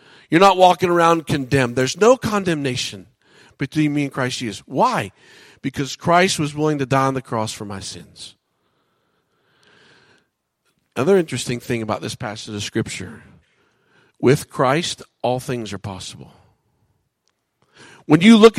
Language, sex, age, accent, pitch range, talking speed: English, male, 50-69, American, 135-205 Hz, 140 wpm